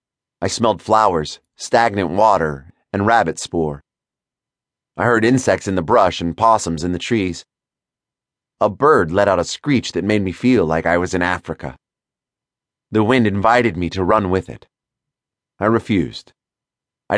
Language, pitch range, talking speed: English, 85-115 Hz, 155 wpm